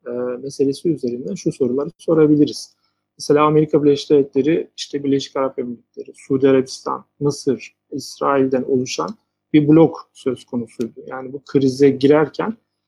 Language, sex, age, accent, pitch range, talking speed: Turkish, male, 40-59, native, 130-160 Hz, 115 wpm